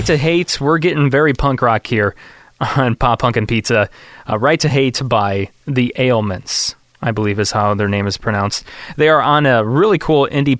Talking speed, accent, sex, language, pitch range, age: 200 wpm, American, male, English, 110-135 Hz, 20-39